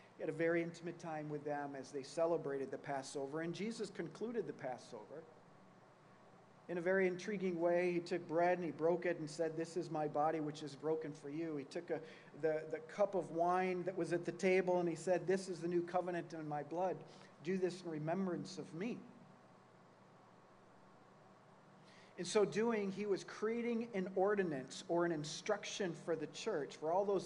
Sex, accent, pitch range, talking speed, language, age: male, American, 160-195 Hz, 190 wpm, English, 40-59